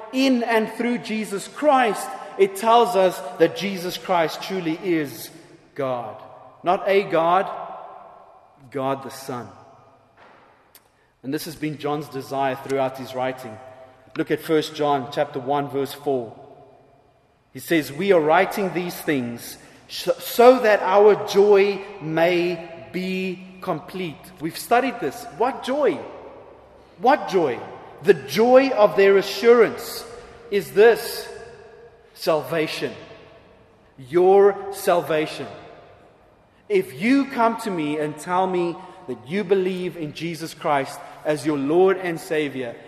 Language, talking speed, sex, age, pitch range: English, 120 wpm, male, 30-49, 140-200 Hz